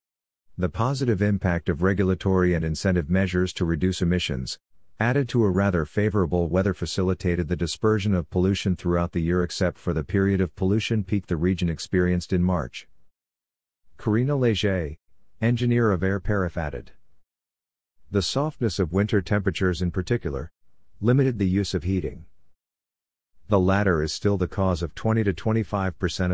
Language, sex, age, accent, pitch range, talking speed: English, male, 50-69, American, 85-100 Hz, 145 wpm